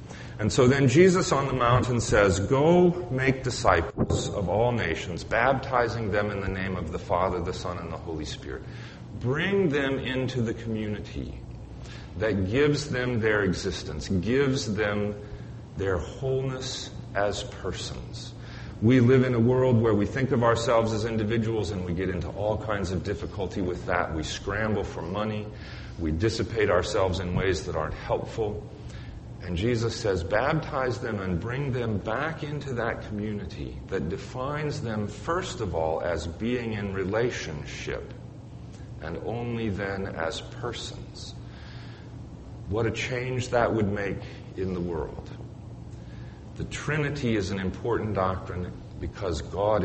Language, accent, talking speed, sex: English, American, 145 wpm, male